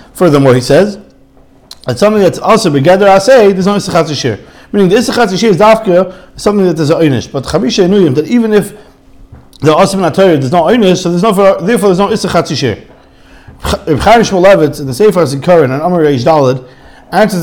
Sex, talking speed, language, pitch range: male, 195 wpm, English, 170-225 Hz